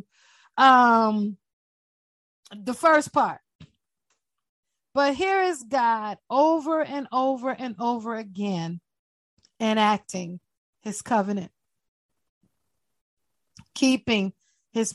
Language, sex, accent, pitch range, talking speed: English, female, American, 205-245 Hz, 75 wpm